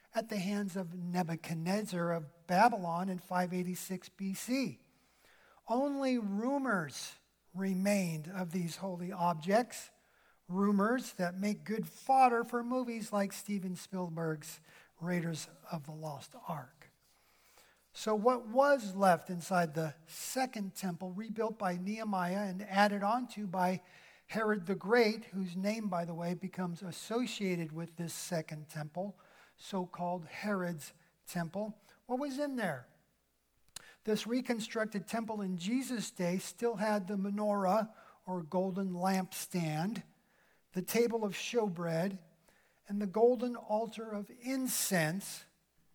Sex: male